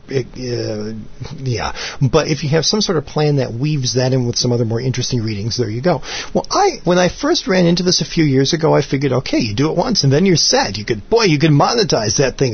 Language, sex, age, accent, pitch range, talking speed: English, male, 50-69, American, 125-160 Hz, 260 wpm